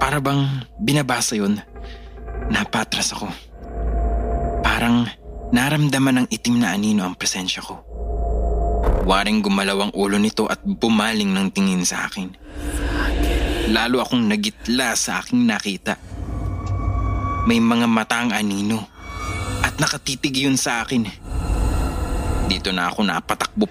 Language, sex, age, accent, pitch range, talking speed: English, male, 20-39, Filipino, 95-145 Hz, 110 wpm